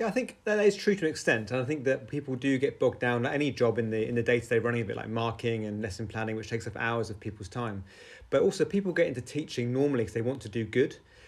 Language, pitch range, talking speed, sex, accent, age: English, 110-130 Hz, 285 wpm, male, British, 30-49